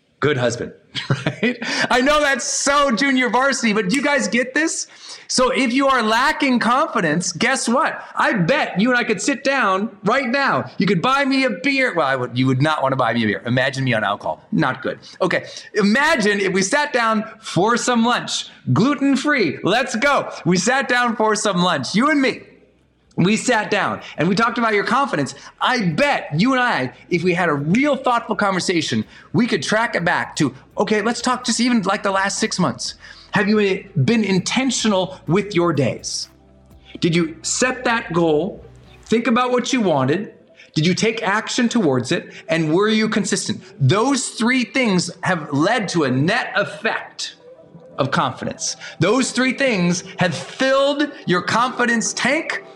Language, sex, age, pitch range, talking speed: English, male, 30-49, 175-255 Hz, 180 wpm